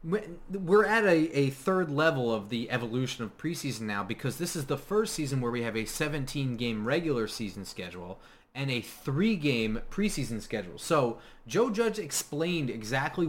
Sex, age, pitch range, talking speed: male, 20-39, 115-150 Hz, 165 wpm